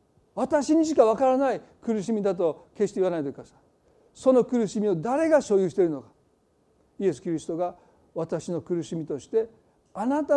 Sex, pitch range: male, 175-245 Hz